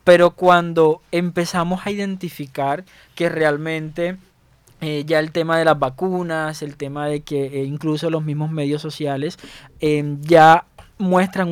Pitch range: 150-170 Hz